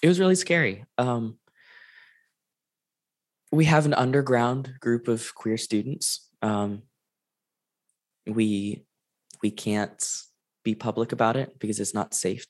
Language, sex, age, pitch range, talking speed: English, male, 20-39, 105-125 Hz, 120 wpm